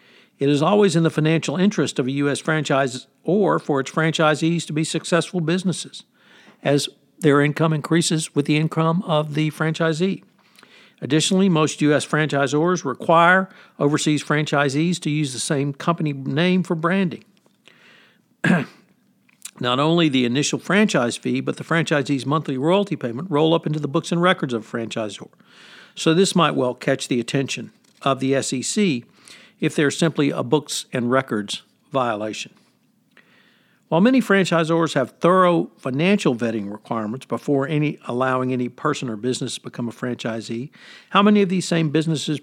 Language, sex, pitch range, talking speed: English, male, 135-170 Hz, 155 wpm